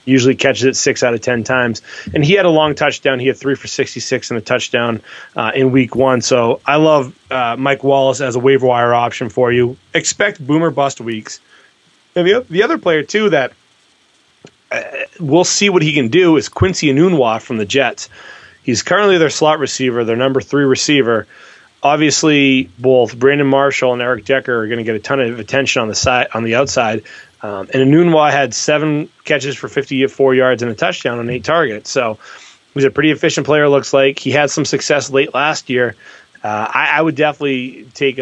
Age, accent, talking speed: 30-49, American, 205 wpm